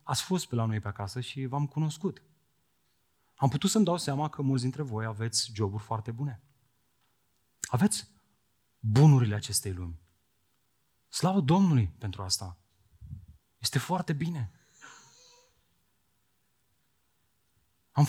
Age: 30-49